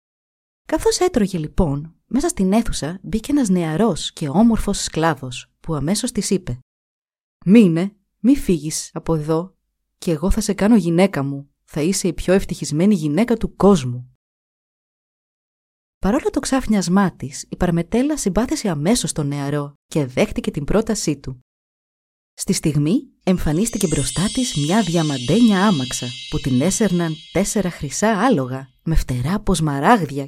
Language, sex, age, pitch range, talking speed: Greek, female, 20-39, 145-215 Hz, 135 wpm